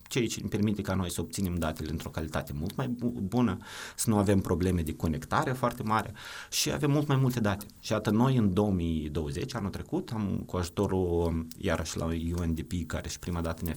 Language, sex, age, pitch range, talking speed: Romanian, male, 30-49, 90-115 Hz, 195 wpm